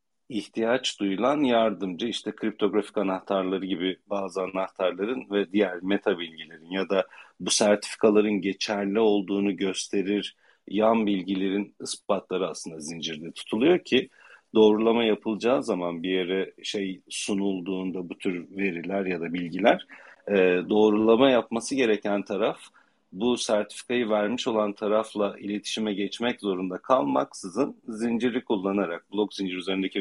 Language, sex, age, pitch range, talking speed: Turkish, male, 40-59, 95-110 Hz, 115 wpm